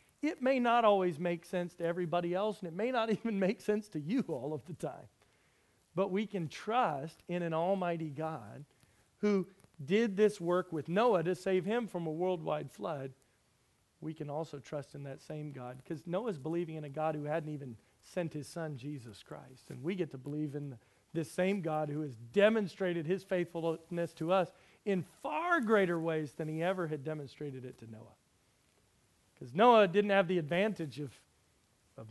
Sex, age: male, 40-59